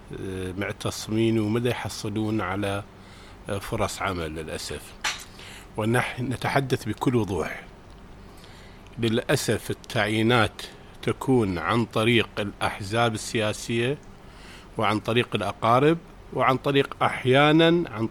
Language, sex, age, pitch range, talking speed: English, male, 50-69, 100-125 Hz, 85 wpm